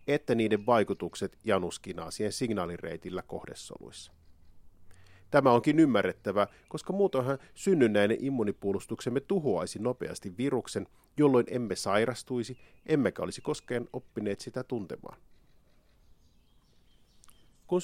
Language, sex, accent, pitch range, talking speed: Finnish, male, native, 95-130 Hz, 85 wpm